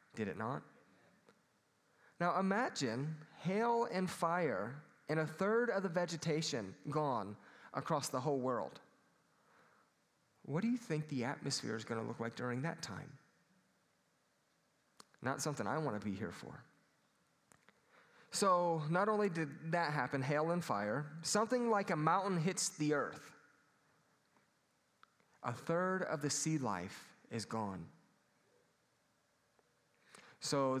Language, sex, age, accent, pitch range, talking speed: English, male, 30-49, American, 120-165 Hz, 130 wpm